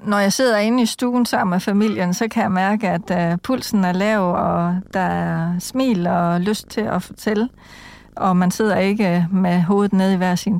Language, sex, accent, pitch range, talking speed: Danish, female, native, 185-225 Hz, 205 wpm